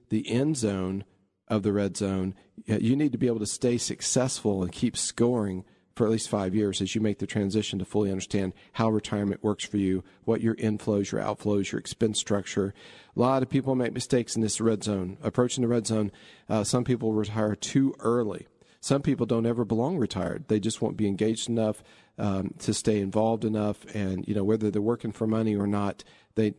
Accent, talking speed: American, 210 wpm